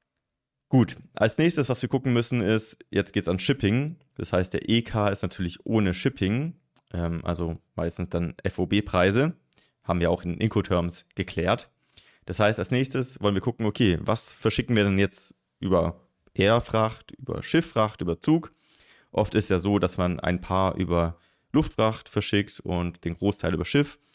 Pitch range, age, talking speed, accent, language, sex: 85-110 Hz, 30-49, 165 wpm, German, German, male